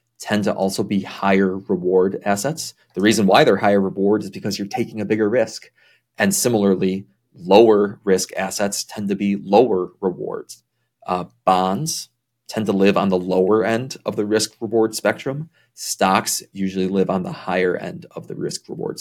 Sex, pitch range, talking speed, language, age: male, 95-120 Hz, 175 wpm, English, 30-49